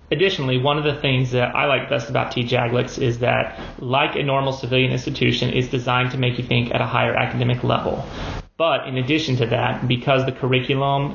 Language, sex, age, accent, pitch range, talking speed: English, male, 30-49, American, 125-135 Hz, 200 wpm